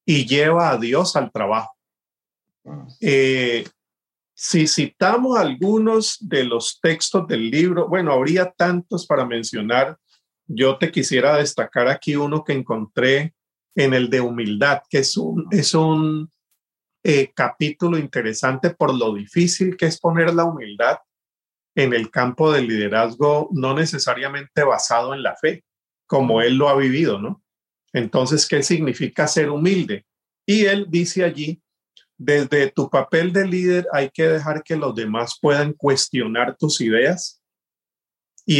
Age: 40-59